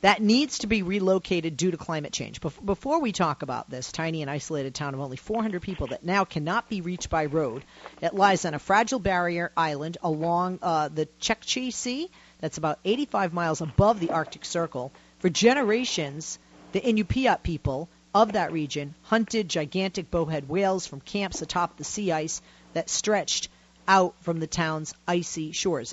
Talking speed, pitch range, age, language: 175 wpm, 155-210 Hz, 40-59, English